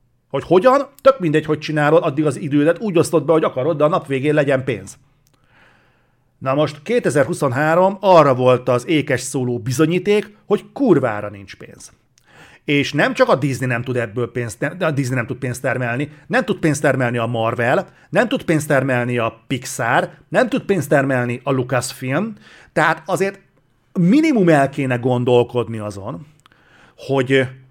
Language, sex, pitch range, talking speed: Hungarian, male, 125-155 Hz, 150 wpm